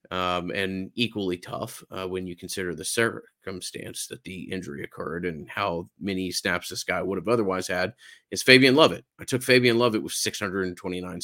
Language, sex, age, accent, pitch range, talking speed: English, male, 30-49, American, 95-115 Hz, 175 wpm